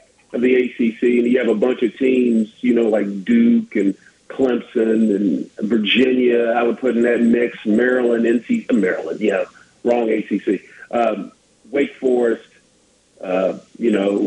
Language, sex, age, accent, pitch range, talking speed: English, male, 40-59, American, 120-140 Hz, 150 wpm